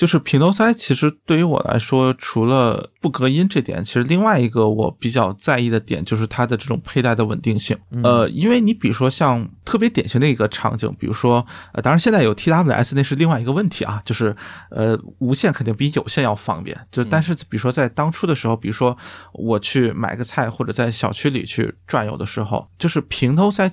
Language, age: Chinese, 20-39